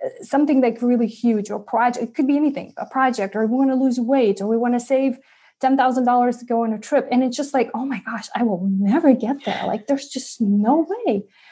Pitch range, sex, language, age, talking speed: 230-275 Hz, female, English, 30-49, 250 wpm